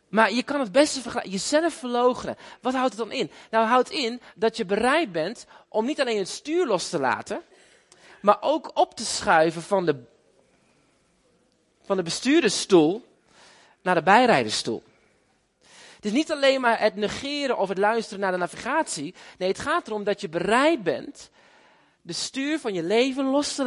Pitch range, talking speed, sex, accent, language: 195-260 Hz, 180 wpm, male, Dutch, Dutch